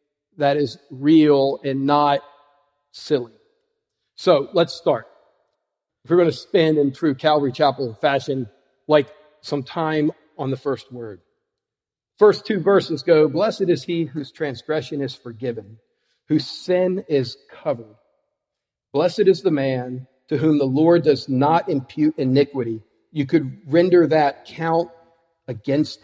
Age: 50-69